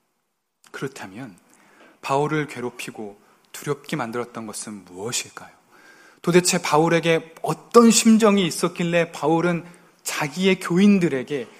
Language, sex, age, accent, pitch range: Korean, male, 20-39, native, 140-175 Hz